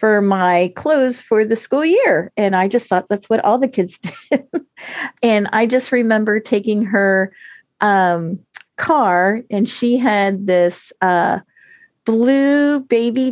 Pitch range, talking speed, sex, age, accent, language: 185-235 Hz, 145 wpm, female, 40-59, American, English